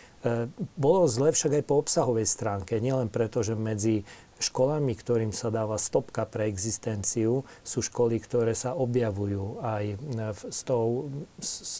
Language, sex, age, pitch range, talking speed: Slovak, male, 40-59, 110-125 Hz, 130 wpm